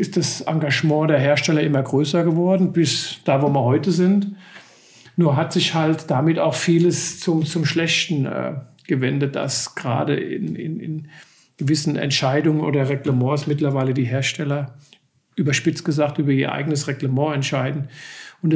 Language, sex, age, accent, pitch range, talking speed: German, male, 50-69, German, 140-165 Hz, 150 wpm